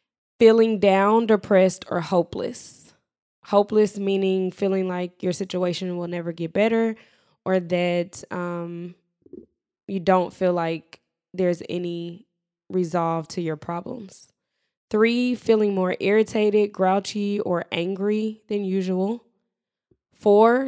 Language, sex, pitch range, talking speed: English, female, 180-215 Hz, 110 wpm